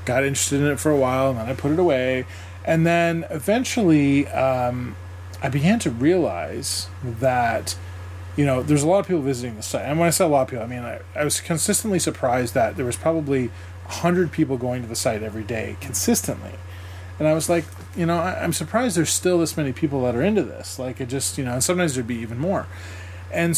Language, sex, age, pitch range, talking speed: English, male, 20-39, 100-155 Hz, 230 wpm